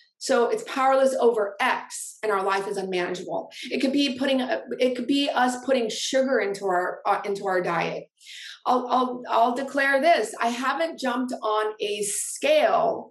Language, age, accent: English, 30-49, American